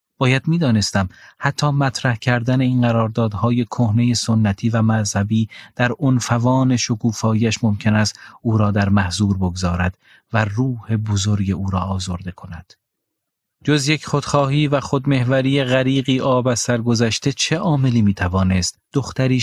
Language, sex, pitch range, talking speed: Persian, male, 105-125 Hz, 130 wpm